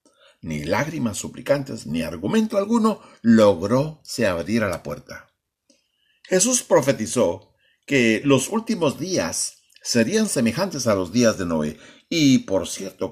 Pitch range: 90-140 Hz